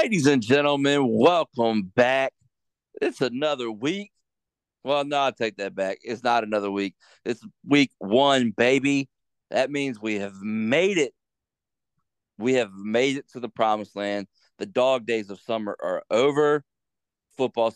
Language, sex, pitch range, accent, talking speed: English, male, 105-135 Hz, American, 150 wpm